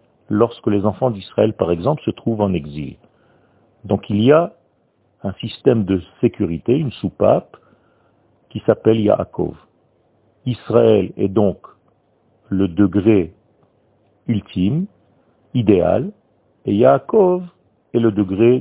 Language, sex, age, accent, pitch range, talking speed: French, male, 50-69, French, 95-125 Hz, 115 wpm